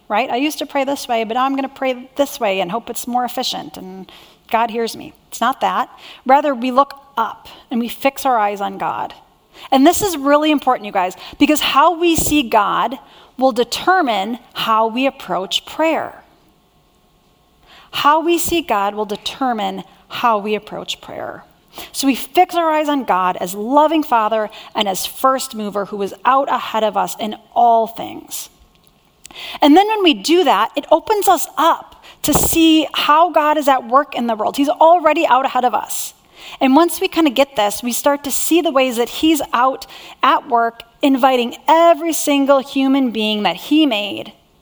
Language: English